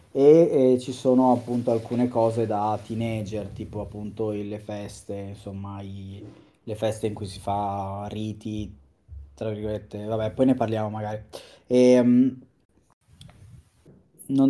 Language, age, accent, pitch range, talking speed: Italian, 20-39, native, 105-125 Hz, 120 wpm